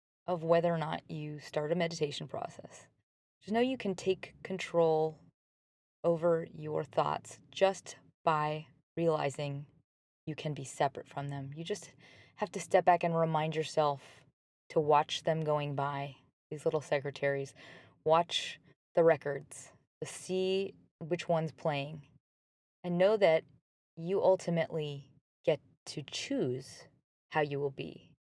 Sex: female